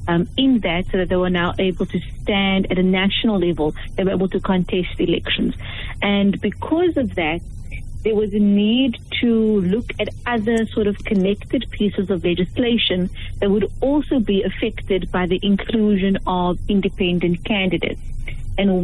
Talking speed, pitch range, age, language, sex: 165 wpm, 190-225 Hz, 30-49, English, female